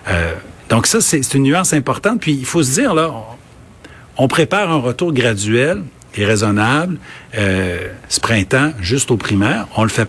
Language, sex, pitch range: French, male, 110-150 Hz